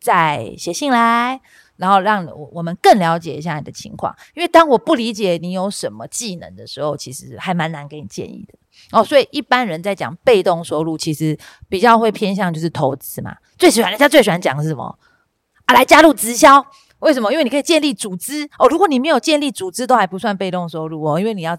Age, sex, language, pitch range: 30-49, female, Chinese, 165-240 Hz